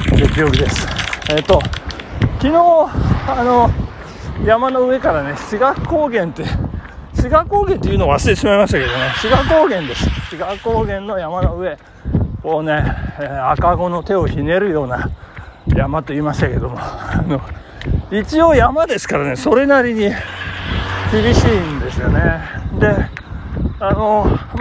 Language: Japanese